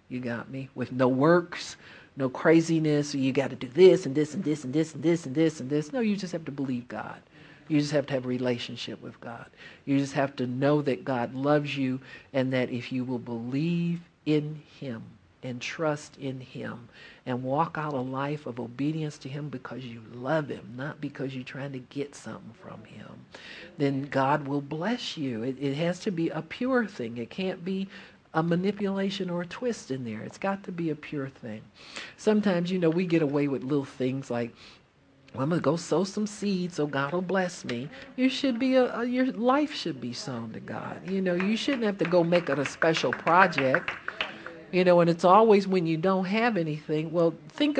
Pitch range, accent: 135-190 Hz, American